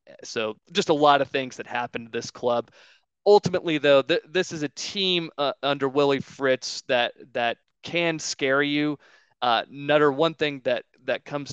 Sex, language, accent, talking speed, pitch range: male, English, American, 170 wpm, 115-140 Hz